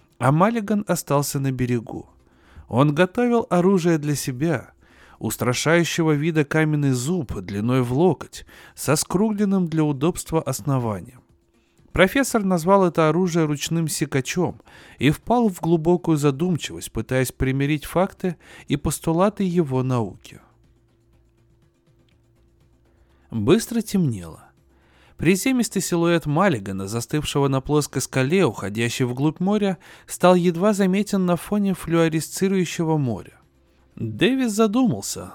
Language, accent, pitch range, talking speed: Russian, native, 120-180 Hz, 105 wpm